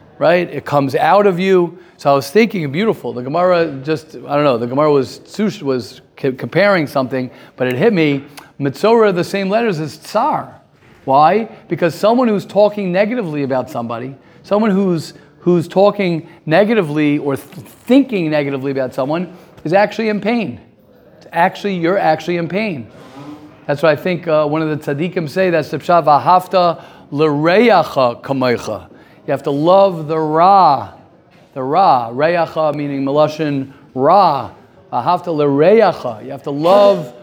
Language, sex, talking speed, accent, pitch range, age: English, male, 150 wpm, American, 140-185 Hz, 40-59